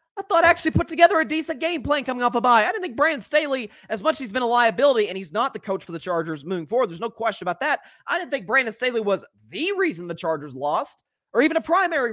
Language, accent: English, American